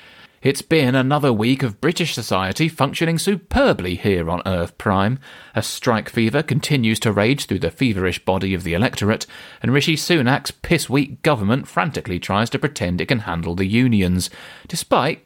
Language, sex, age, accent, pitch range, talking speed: English, male, 30-49, British, 100-135 Hz, 160 wpm